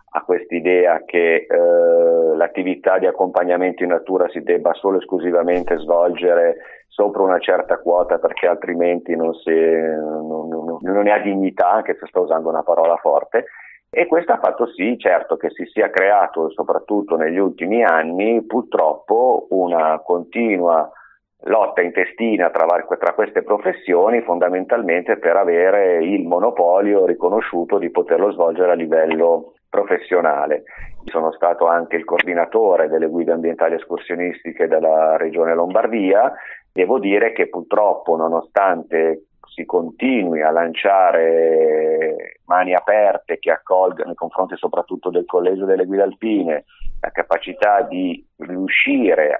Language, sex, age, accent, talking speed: Italian, male, 40-59, native, 125 wpm